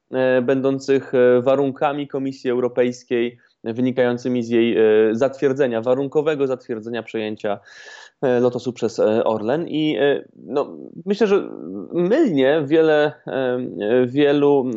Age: 20-39